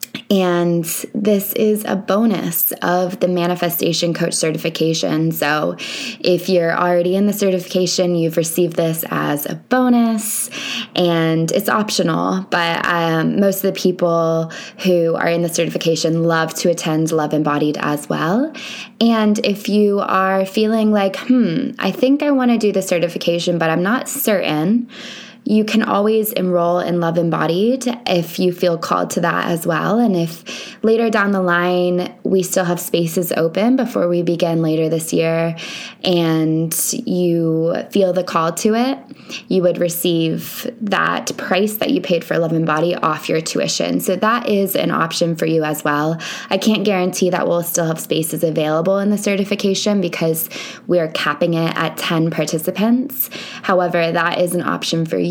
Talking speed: 165 wpm